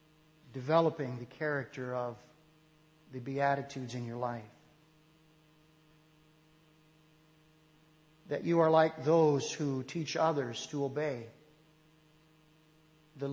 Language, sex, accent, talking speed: English, male, American, 90 wpm